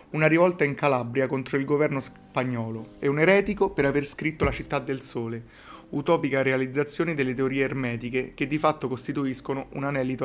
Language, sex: Italian, male